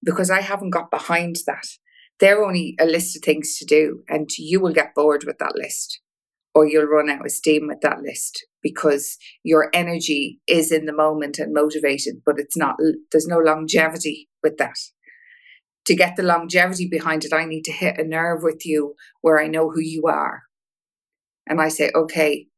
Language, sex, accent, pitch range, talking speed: English, female, Irish, 155-170 Hz, 195 wpm